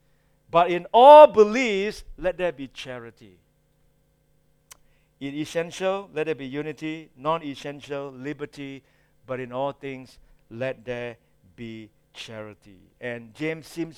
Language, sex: English, male